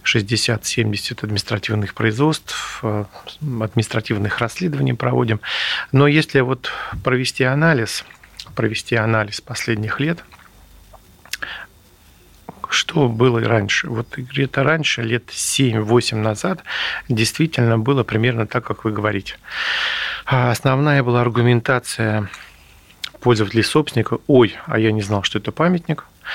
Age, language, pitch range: 40-59, Russian, 110-130 Hz